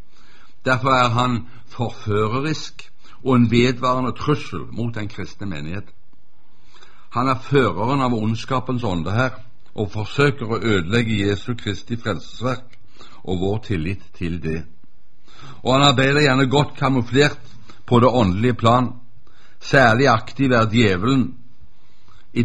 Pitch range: 105-130 Hz